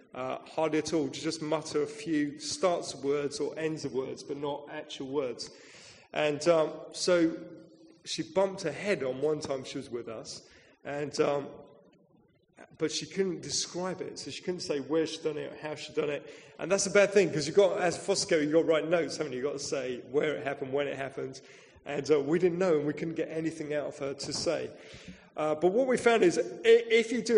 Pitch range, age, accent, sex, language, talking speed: 150-190 Hz, 30-49, British, male, English, 230 wpm